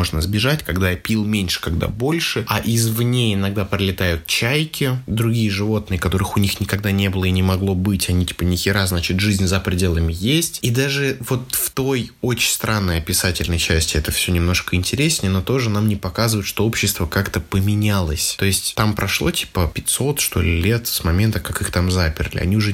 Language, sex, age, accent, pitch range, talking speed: Russian, male, 20-39, native, 90-110 Hz, 190 wpm